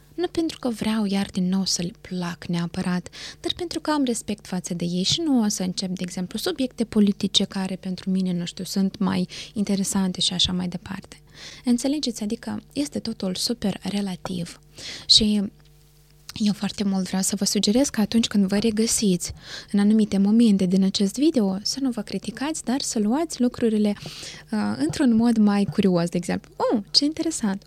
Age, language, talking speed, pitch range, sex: 20-39, Romanian, 180 wpm, 185-235 Hz, female